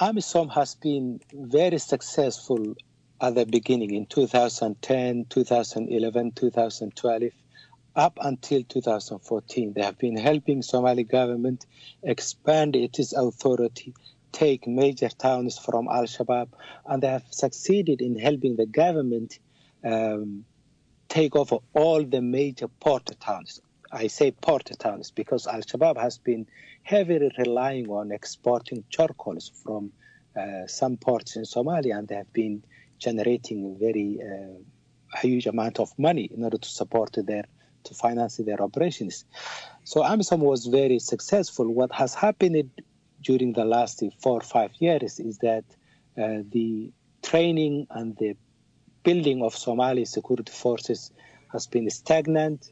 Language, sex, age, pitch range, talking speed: English, male, 60-79, 115-140 Hz, 130 wpm